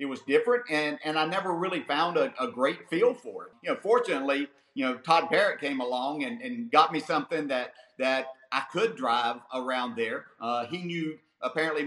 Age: 50-69